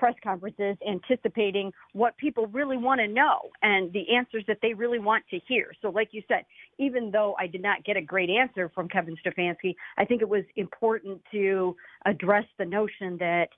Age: 50-69